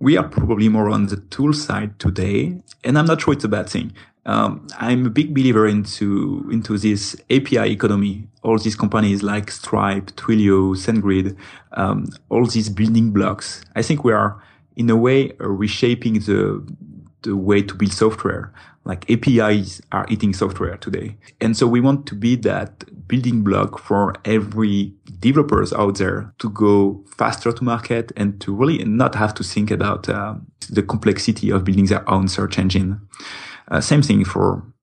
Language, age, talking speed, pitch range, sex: English, 30-49, 170 wpm, 100-115 Hz, male